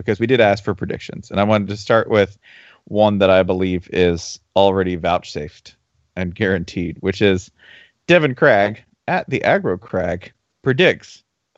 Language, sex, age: English, male, 40-59